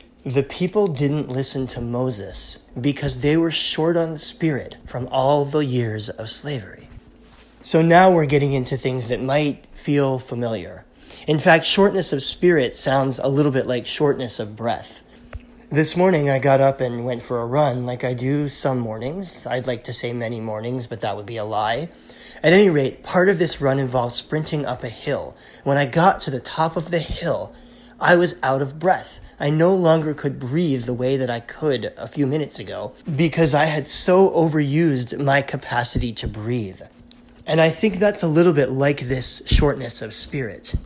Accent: American